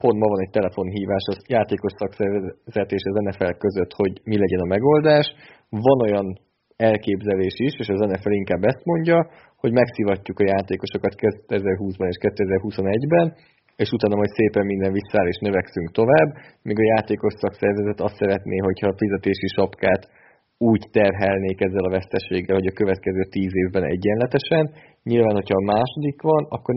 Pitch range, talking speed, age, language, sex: 95-115 Hz, 155 wpm, 20-39, Hungarian, male